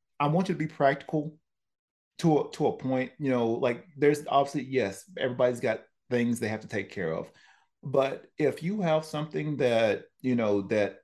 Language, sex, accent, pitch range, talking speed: English, male, American, 110-145 Hz, 190 wpm